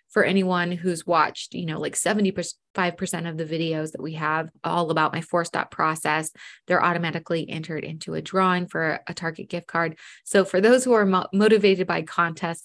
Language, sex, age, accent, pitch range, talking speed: English, female, 20-39, American, 175-215 Hz, 185 wpm